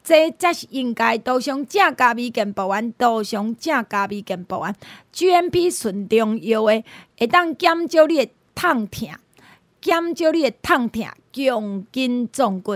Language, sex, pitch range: Chinese, female, 220-285 Hz